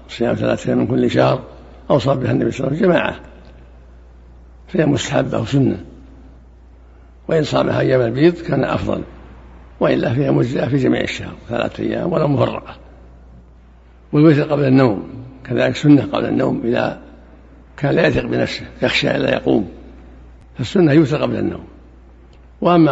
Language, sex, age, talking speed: Arabic, male, 60-79, 135 wpm